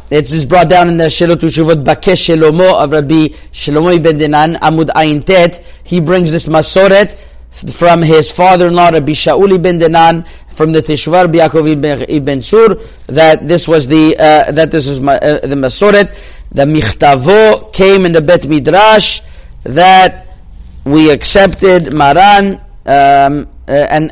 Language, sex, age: English, male, 40-59